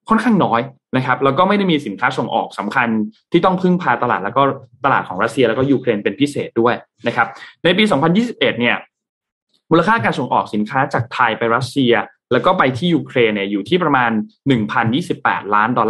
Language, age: Thai, 20-39